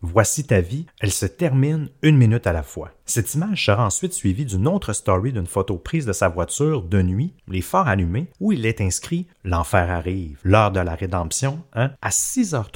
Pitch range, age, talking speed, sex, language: 95-140 Hz, 30-49, 220 wpm, male, French